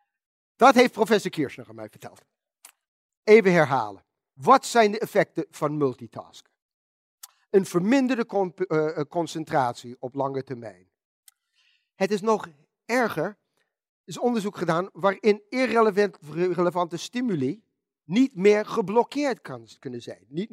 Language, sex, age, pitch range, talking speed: Dutch, male, 50-69, 145-205 Hz, 115 wpm